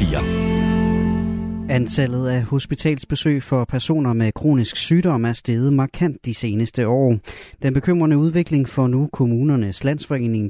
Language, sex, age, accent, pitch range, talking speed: Danish, male, 30-49, native, 115-150 Hz, 120 wpm